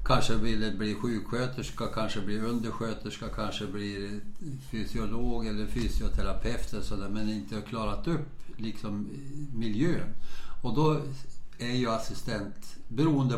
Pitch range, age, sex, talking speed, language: 105-125 Hz, 60-79, male, 120 wpm, Swedish